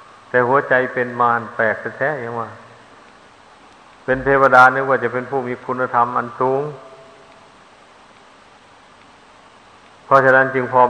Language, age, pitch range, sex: Thai, 60-79, 125-140 Hz, male